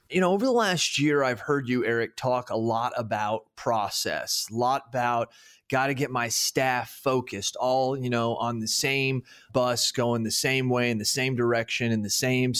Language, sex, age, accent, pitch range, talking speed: English, male, 30-49, American, 120-145 Hz, 200 wpm